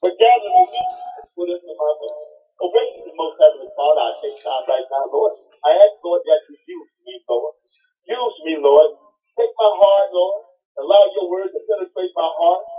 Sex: male